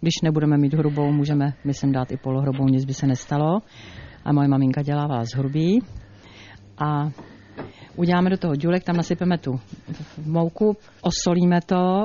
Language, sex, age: Czech, female, 50-69